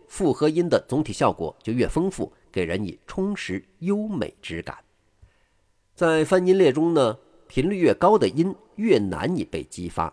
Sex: male